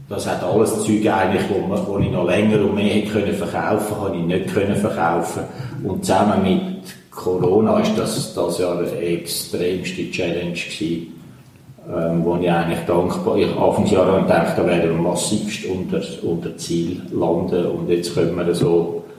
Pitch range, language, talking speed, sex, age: 85-105 Hz, German, 160 wpm, male, 50-69